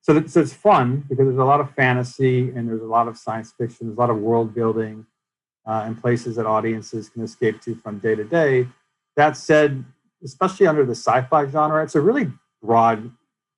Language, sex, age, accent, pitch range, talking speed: English, male, 40-59, American, 115-135 Hz, 200 wpm